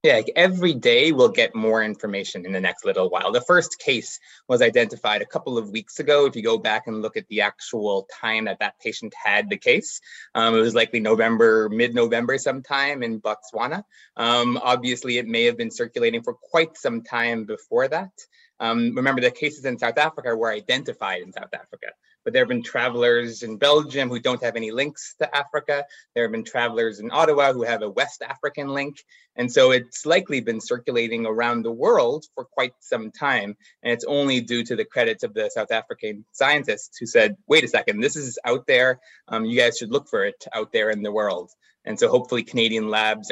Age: 20-39